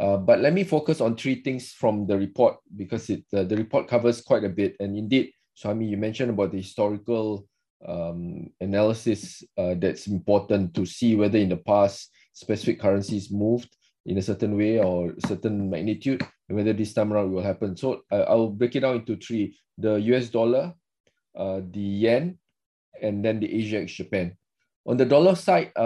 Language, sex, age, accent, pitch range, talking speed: English, male, 20-39, Malaysian, 100-125 Hz, 190 wpm